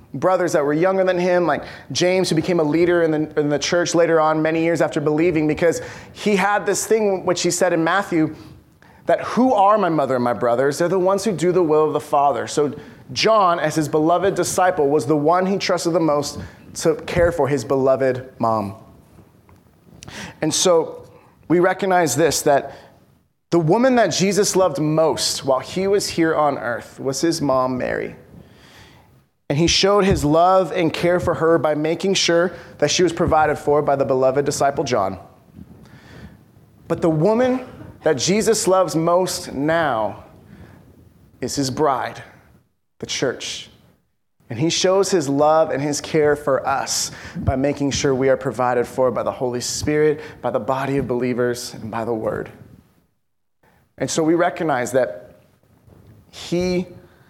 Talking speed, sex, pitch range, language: 170 wpm, male, 135-180 Hz, English